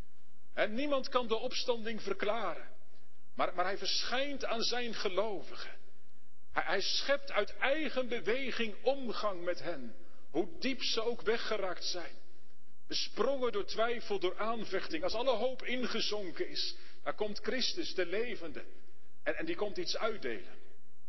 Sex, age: male, 40-59